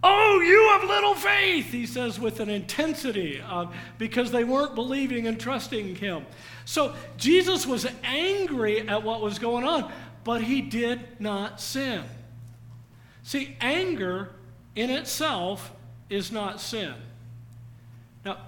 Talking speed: 130 wpm